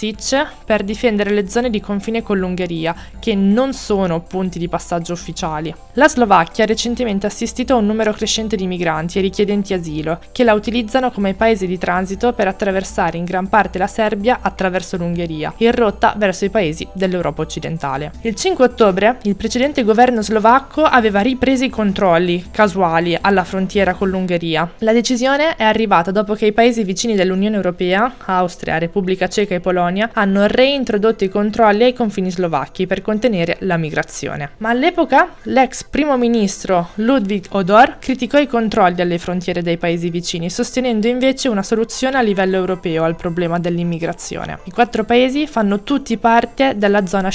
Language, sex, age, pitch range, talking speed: Italian, female, 20-39, 185-230 Hz, 160 wpm